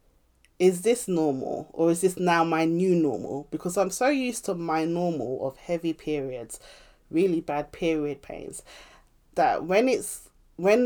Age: 30-49